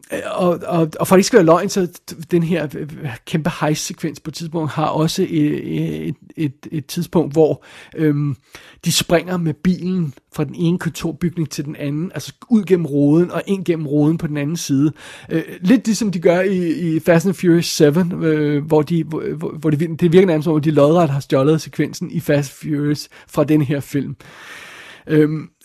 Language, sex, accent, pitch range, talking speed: Danish, male, native, 150-185 Hz, 175 wpm